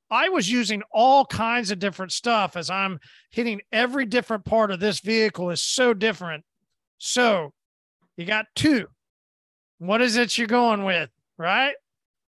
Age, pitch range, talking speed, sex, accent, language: 40-59, 180-245 Hz, 150 wpm, male, American, English